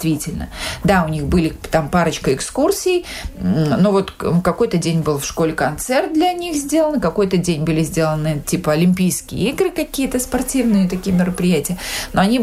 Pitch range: 165-215 Hz